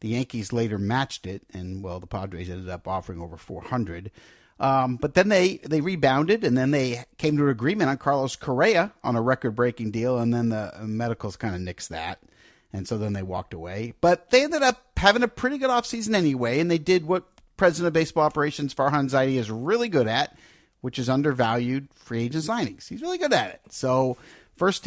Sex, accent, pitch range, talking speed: male, American, 115-160 Hz, 205 wpm